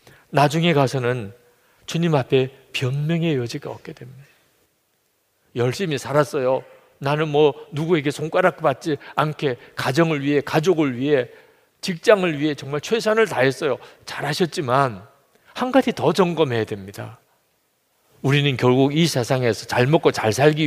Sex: male